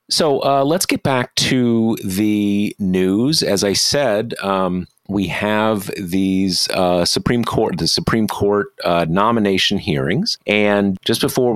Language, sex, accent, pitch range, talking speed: English, male, American, 95-115 Hz, 140 wpm